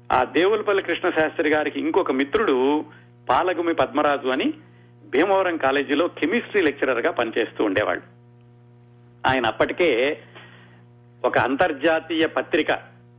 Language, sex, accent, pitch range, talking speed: Telugu, male, native, 120-150 Hz, 100 wpm